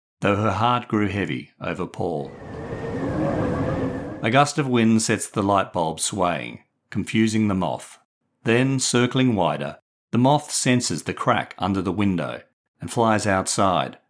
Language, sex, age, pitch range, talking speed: English, male, 50-69, 95-120 Hz, 140 wpm